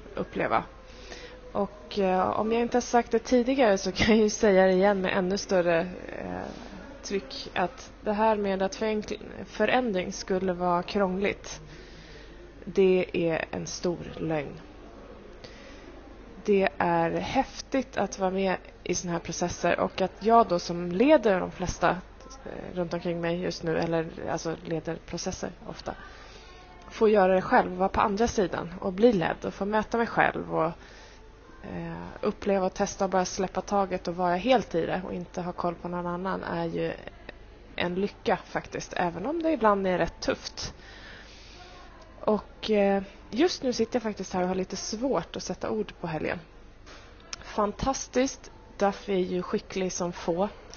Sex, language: female, Swedish